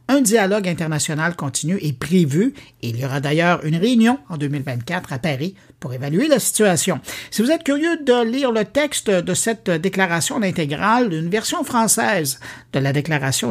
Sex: male